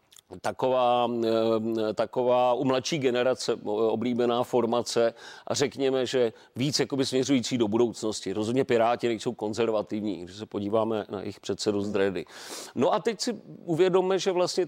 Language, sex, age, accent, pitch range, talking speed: Czech, male, 40-59, native, 115-165 Hz, 135 wpm